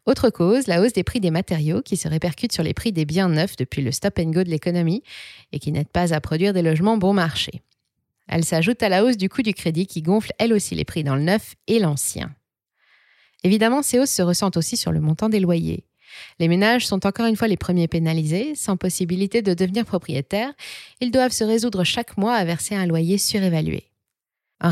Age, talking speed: 20-39, 215 wpm